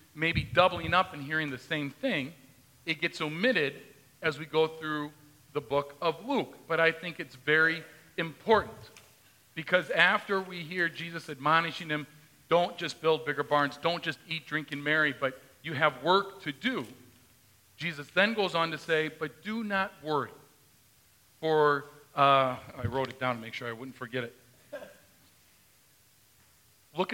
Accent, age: American, 40-59